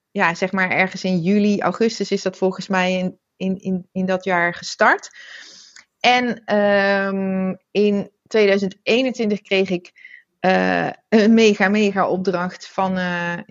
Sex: female